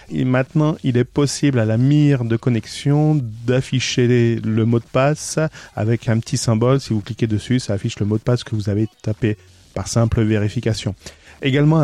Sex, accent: male, French